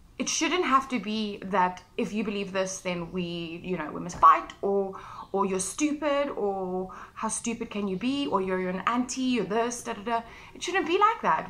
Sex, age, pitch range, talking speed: female, 20-39, 195-265 Hz, 220 wpm